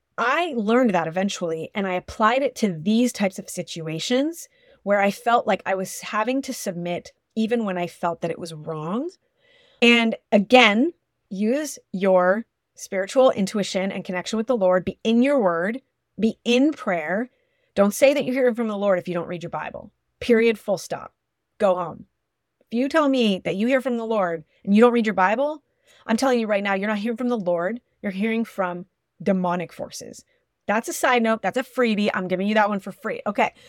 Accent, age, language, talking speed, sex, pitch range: American, 30-49, English, 205 wpm, female, 185-250 Hz